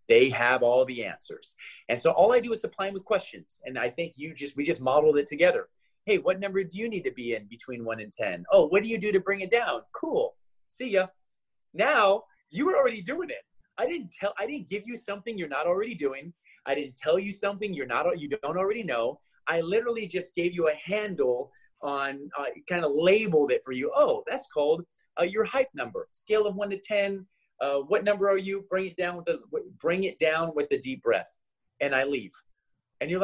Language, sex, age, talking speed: English, male, 30-49, 220 wpm